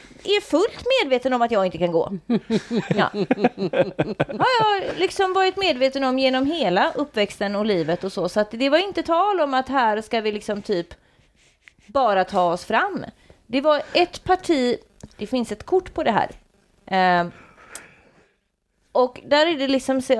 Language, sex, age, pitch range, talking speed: Swedish, female, 30-49, 195-285 Hz, 170 wpm